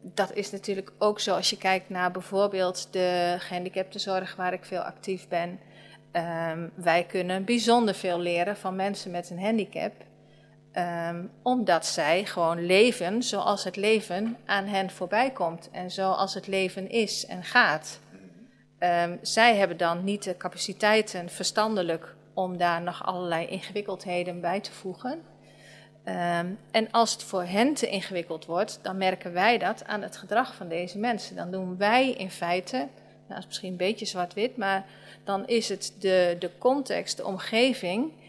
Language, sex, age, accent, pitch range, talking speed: Dutch, female, 40-59, Dutch, 175-210 Hz, 155 wpm